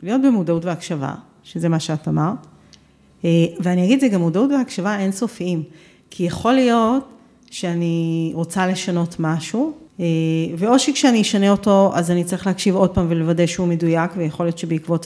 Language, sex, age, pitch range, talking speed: Hebrew, female, 40-59, 175-240 Hz, 150 wpm